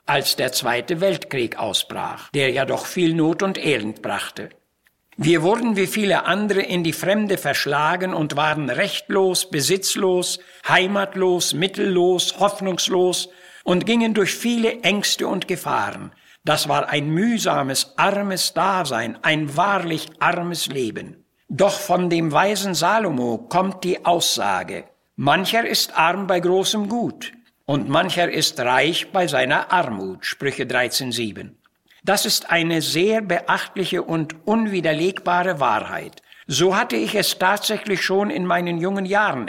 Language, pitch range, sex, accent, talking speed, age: German, 160-195 Hz, male, German, 130 wpm, 60-79